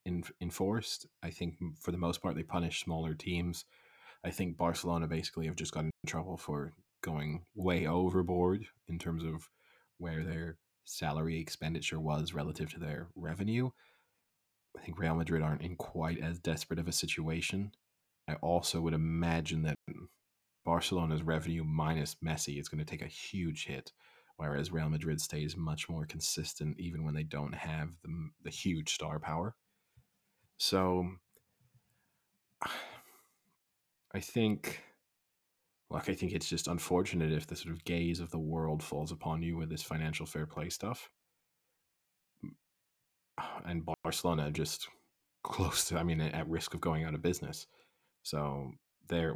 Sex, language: male, English